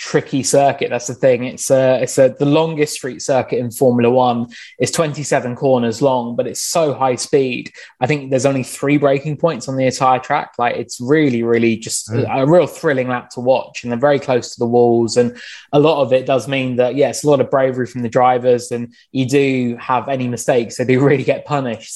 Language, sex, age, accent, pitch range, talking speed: English, male, 20-39, British, 120-140 Hz, 230 wpm